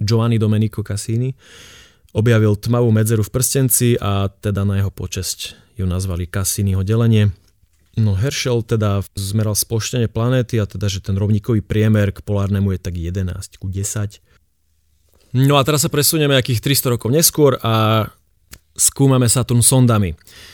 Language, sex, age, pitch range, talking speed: Slovak, male, 30-49, 95-120 Hz, 145 wpm